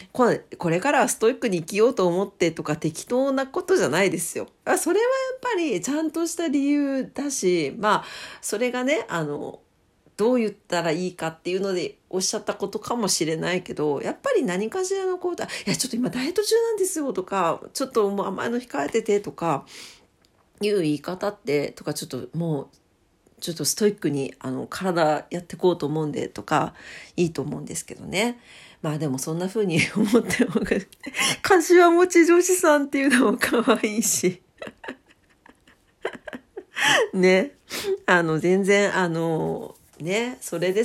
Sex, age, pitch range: female, 40-59, 165-245 Hz